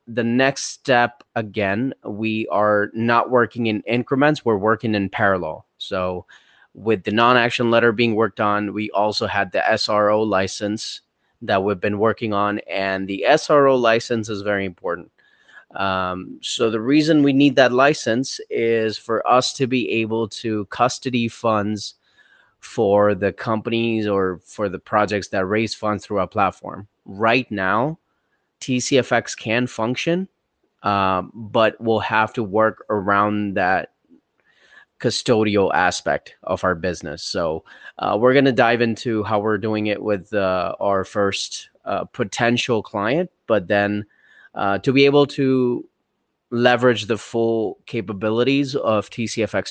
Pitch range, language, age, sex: 105-120 Hz, English, 30-49, male